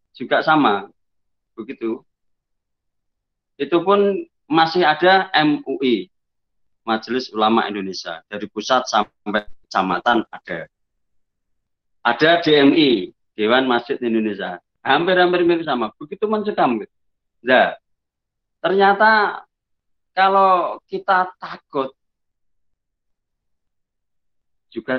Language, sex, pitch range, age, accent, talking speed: Indonesian, male, 110-155 Hz, 30-49, native, 80 wpm